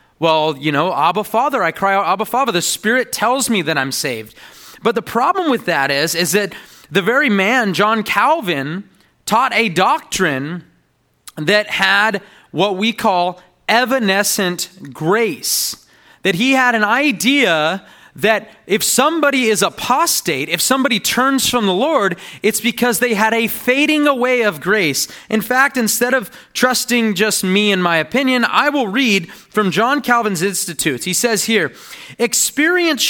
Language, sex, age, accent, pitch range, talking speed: English, male, 30-49, American, 195-265 Hz, 155 wpm